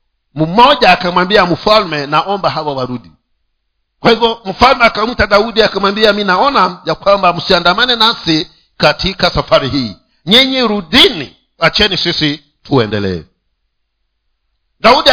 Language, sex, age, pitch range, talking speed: Swahili, male, 50-69, 160-260 Hz, 120 wpm